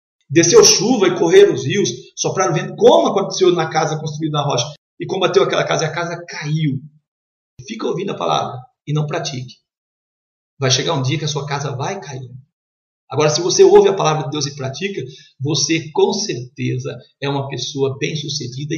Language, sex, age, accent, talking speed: Portuguese, male, 50-69, Brazilian, 185 wpm